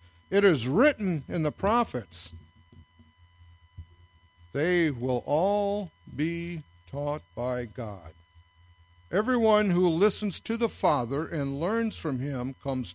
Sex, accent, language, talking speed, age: male, American, English, 110 wpm, 60-79